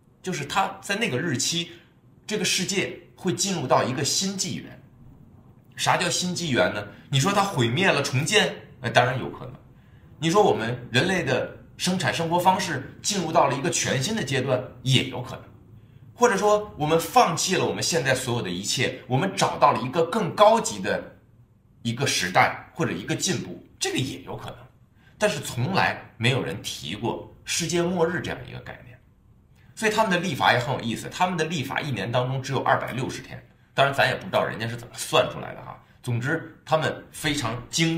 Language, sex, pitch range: Chinese, male, 120-180 Hz